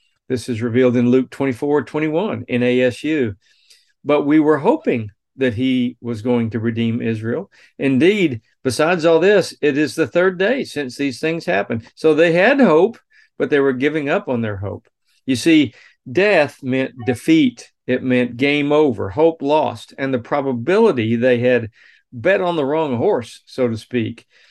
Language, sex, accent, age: English, male, American, 50-69